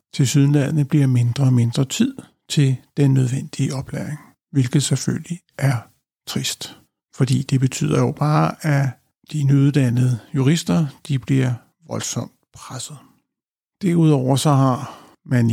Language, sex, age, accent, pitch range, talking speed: Danish, male, 60-79, native, 125-150 Hz, 125 wpm